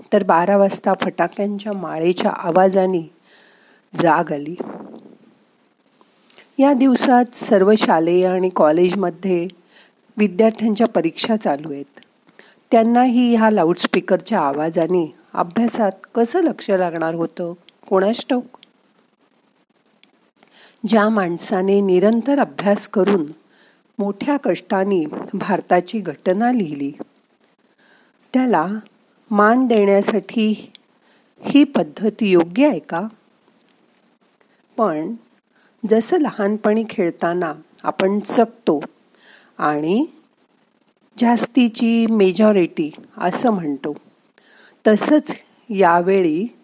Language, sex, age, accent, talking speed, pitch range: Marathi, female, 50-69, native, 55 wpm, 180-235 Hz